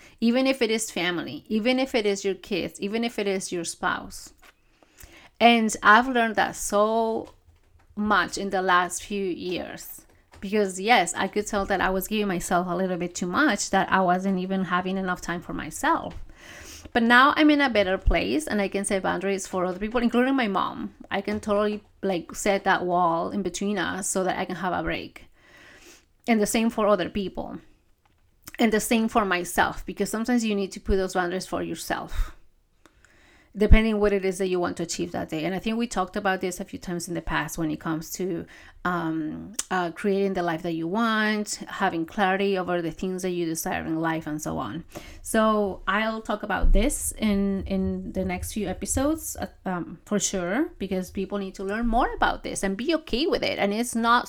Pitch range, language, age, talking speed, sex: 180-225 Hz, English, 30-49, 205 wpm, female